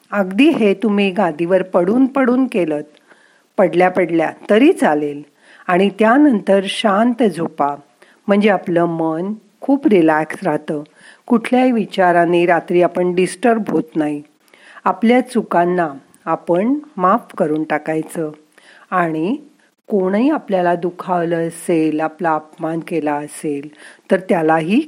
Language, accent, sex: Marathi, native, female